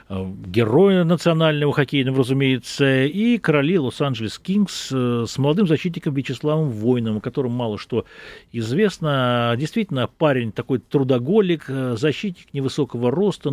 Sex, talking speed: male, 110 wpm